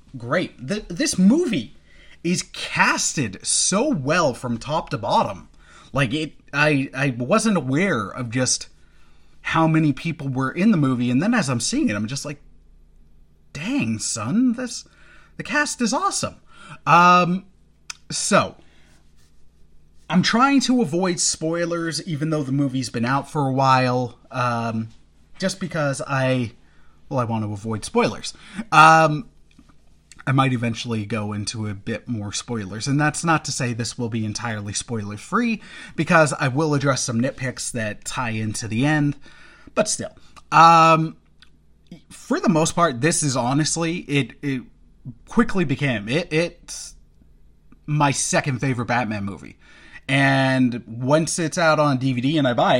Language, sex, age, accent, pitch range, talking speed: English, male, 30-49, American, 120-165 Hz, 150 wpm